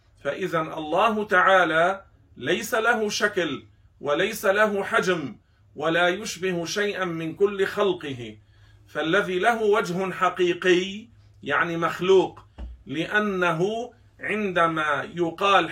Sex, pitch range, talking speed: male, 150-190 Hz, 90 wpm